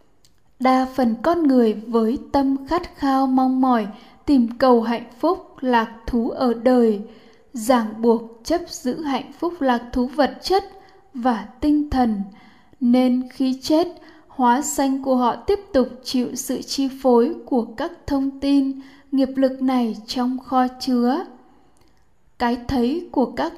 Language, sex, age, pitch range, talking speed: Vietnamese, female, 10-29, 245-280 Hz, 150 wpm